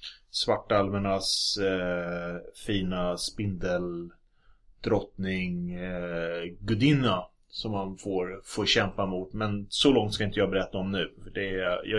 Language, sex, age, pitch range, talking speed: Swedish, male, 30-49, 95-120 Hz, 125 wpm